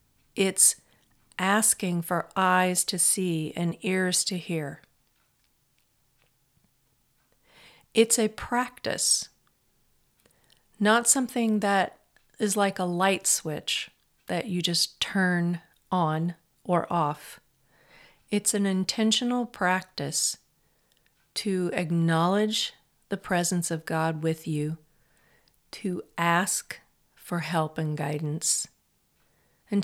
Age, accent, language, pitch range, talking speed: 50-69, American, English, 165-205 Hz, 95 wpm